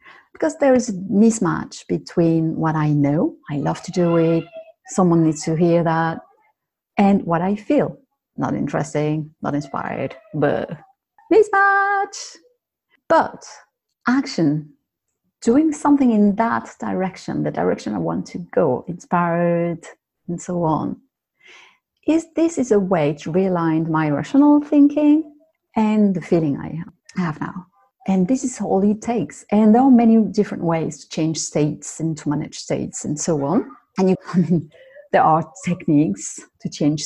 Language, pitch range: English, 160-255 Hz